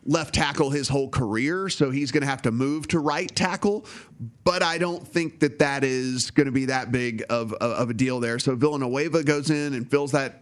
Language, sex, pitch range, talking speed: English, male, 130-155 Hz, 225 wpm